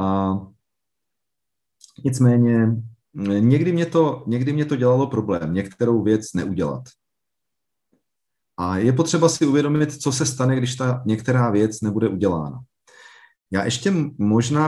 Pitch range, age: 115-135 Hz, 40-59